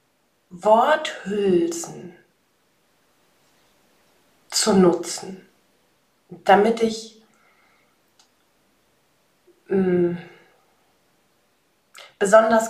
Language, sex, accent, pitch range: German, female, German, 185-265 Hz